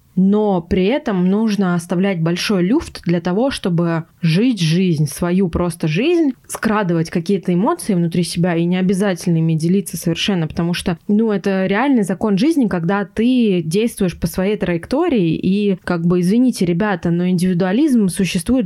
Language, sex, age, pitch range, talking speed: Russian, female, 20-39, 175-210 Hz, 150 wpm